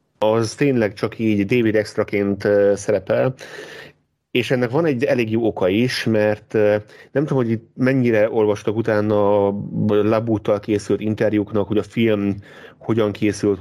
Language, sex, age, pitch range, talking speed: Hungarian, male, 30-49, 105-120 Hz, 140 wpm